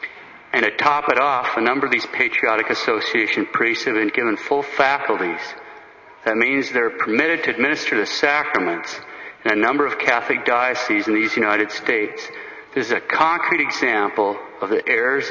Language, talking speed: English, 170 wpm